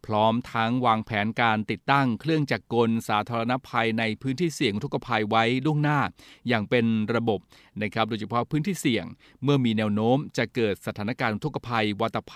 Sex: male